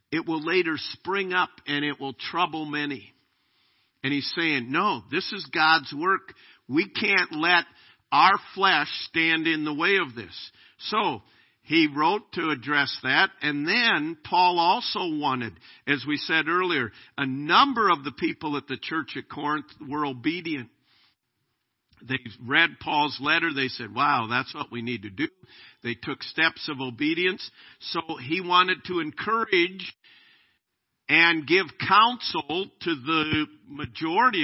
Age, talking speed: 50-69, 150 wpm